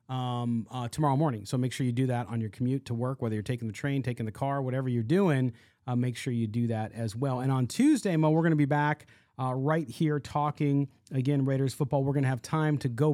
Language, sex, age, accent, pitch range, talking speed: English, male, 30-49, American, 120-145 Hz, 260 wpm